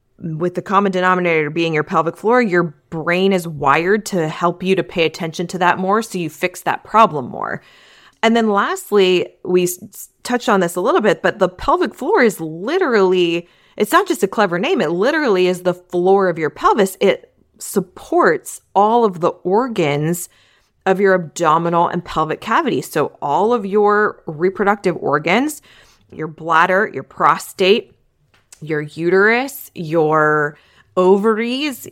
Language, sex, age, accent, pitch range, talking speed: English, female, 20-39, American, 170-210 Hz, 155 wpm